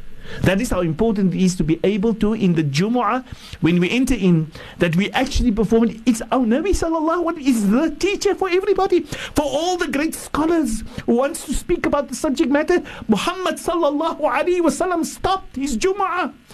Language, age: English, 50-69